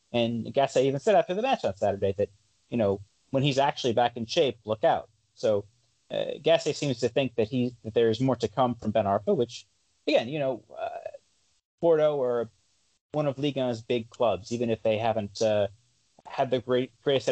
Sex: male